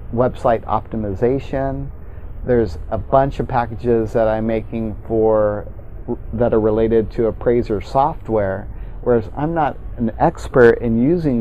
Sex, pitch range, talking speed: male, 105-125 Hz, 125 wpm